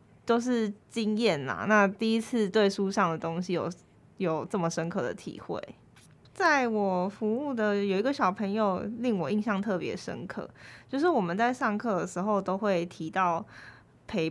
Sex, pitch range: female, 175-220 Hz